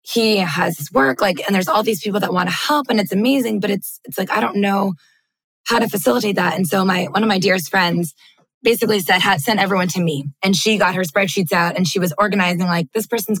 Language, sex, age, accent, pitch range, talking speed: English, female, 20-39, American, 180-215 Hz, 250 wpm